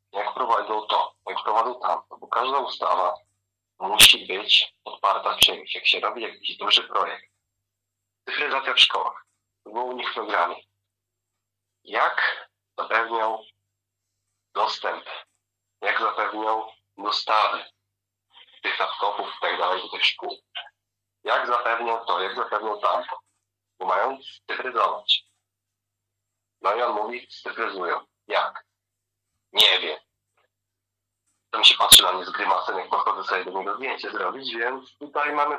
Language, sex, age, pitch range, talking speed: Polish, male, 40-59, 100-120 Hz, 125 wpm